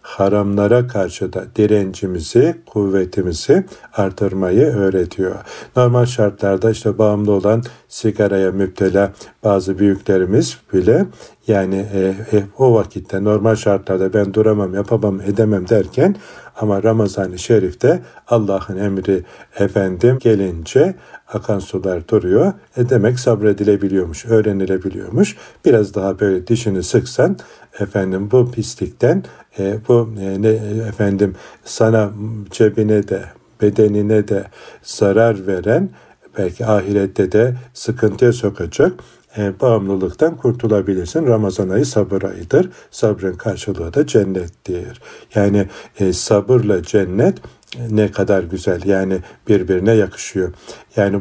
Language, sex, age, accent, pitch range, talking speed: Turkish, male, 50-69, native, 95-110 Hz, 105 wpm